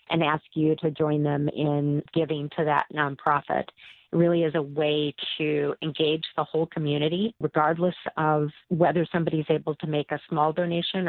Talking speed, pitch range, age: 175 wpm, 150-170 Hz, 40-59